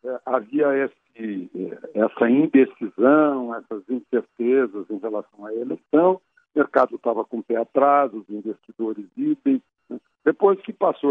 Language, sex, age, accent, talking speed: Portuguese, male, 60-79, Brazilian, 130 wpm